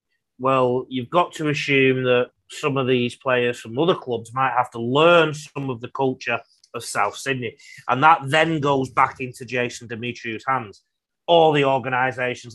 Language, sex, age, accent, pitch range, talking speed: English, male, 30-49, British, 120-150 Hz, 170 wpm